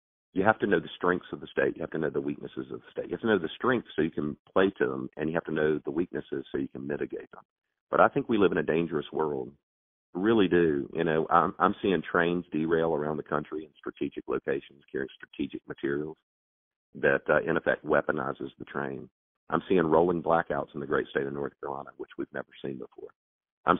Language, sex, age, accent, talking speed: English, male, 50-69, American, 235 wpm